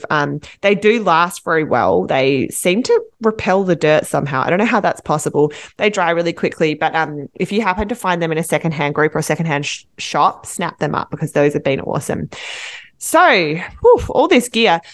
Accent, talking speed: Australian, 200 wpm